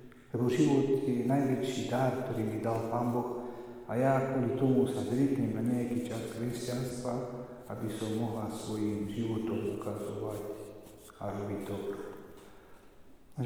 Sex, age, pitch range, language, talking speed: male, 50-69, 105-125 Hz, Slovak, 135 wpm